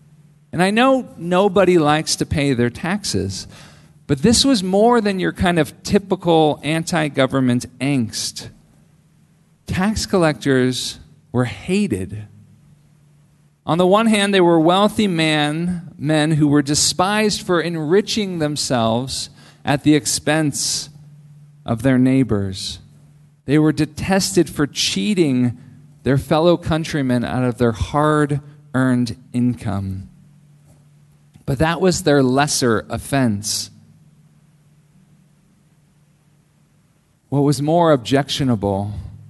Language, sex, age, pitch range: English, male, 40-59, 120-155 Hz